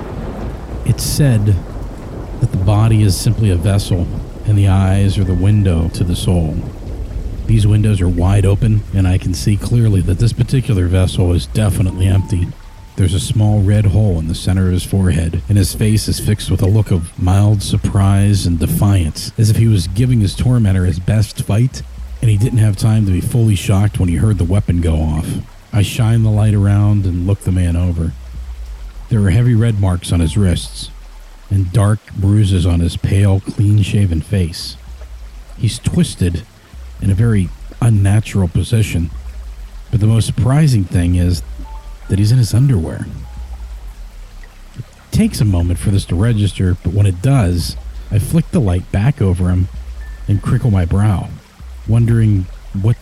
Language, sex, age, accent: English, male, 40-59, American